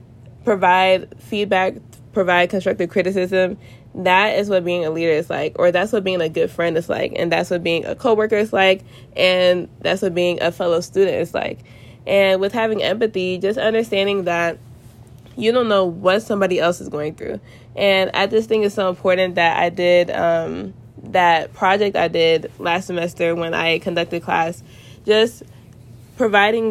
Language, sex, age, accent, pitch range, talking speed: English, female, 20-39, American, 165-195 Hz, 175 wpm